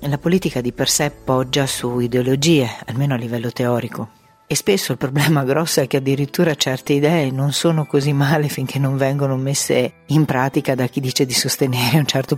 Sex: female